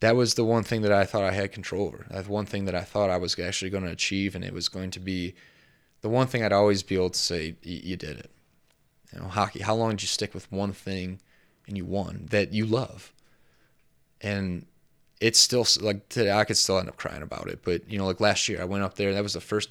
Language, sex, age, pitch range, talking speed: English, male, 20-39, 100-130 Hz, 270 wpm